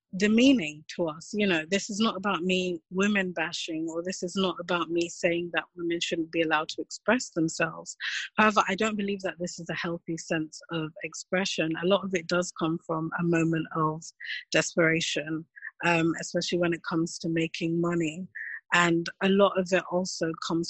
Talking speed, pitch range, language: 190 wpm, 165-195 Hz, English